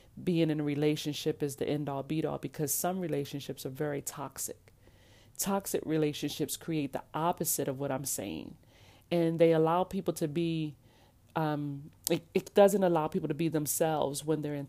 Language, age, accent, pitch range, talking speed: English, 40-59, American, 140-165 Hz, 170 wpm